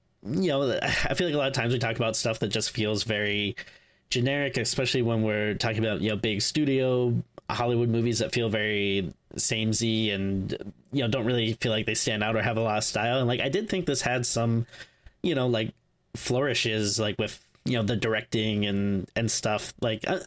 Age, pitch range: 20-39, 105-130 Hz